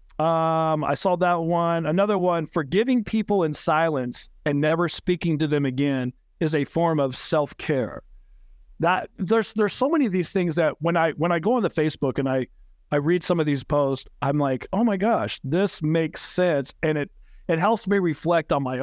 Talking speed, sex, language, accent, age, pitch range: 200 wpm, male, English, American, 40-59, 140-175 Hz